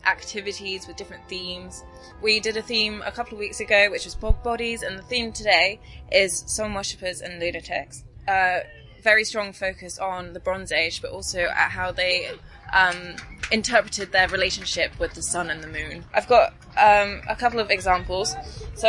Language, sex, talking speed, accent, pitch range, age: English, female, 185 wpm, British, 180-215 Hz, 20-39